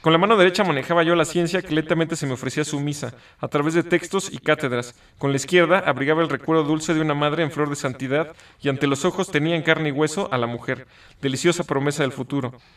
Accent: Mexican